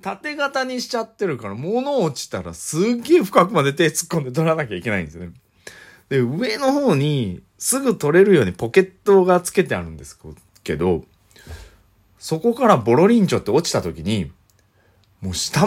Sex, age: male, 40-59